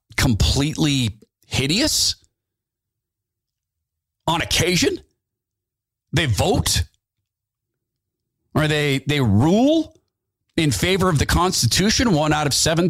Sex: male